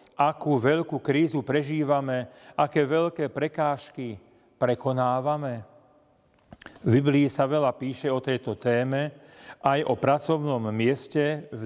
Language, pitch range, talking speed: Slovak, 130-160 Hz, 110 wpm